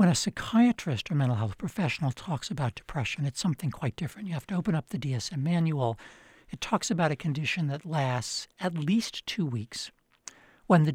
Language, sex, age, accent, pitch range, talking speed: English, male, 60-79, American, 135-185 Hz, 190 wpm